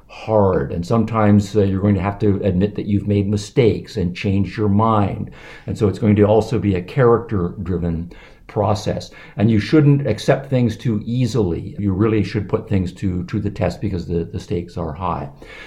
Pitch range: 95-115 Hz